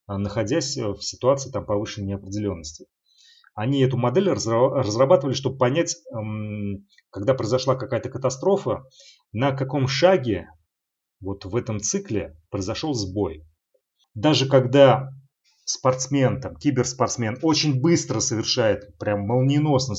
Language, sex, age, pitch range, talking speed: Russian, male, 30-49, 110-150 Hz, 95 wpm